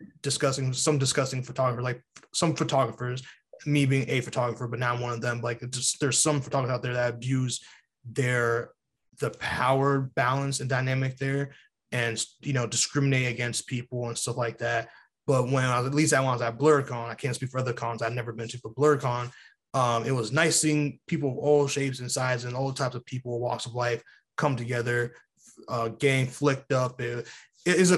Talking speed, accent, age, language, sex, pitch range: 200 wpm, American, 20-39, English, male, 120-145 Hz